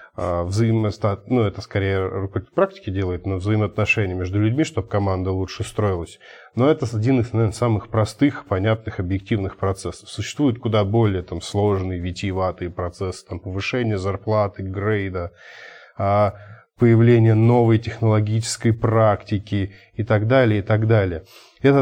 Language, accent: Russian, native